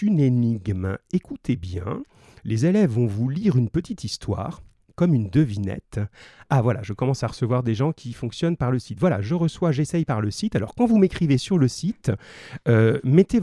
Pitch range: 115-155 Hz